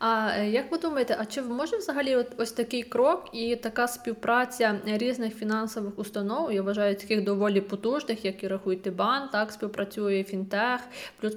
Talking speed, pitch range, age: 155 wpm, 210-235 Hz, 20-39